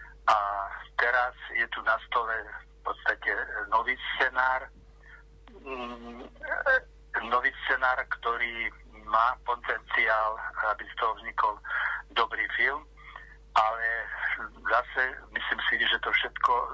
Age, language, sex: 50-69, Slovak, male